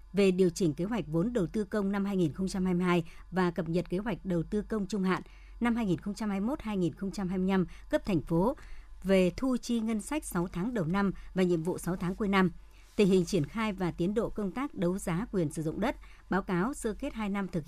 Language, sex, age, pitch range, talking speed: Vietnamese, male, 60-79, 170-215 Hz, 215 wpm